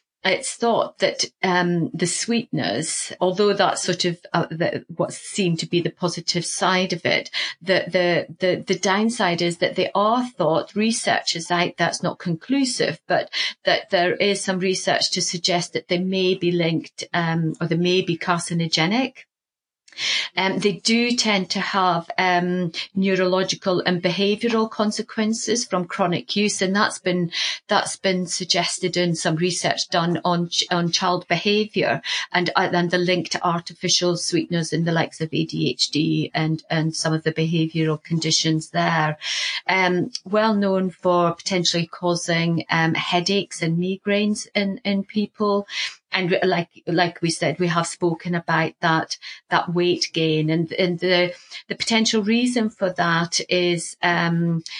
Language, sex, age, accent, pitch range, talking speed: English, female, 30-49, British, 170-200 Hz, 155 wpm